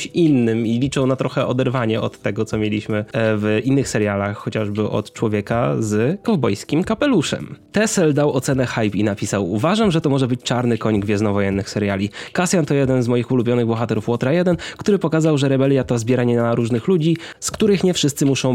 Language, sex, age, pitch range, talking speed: Polish, male, 20-39, 110-145 Hz, 190 wpm